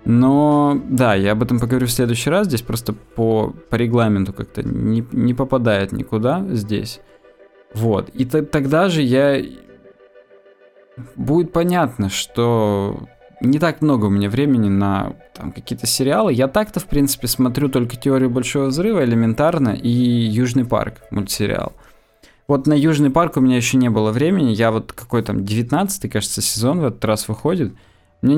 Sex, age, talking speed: male, 20-39, 155 wpm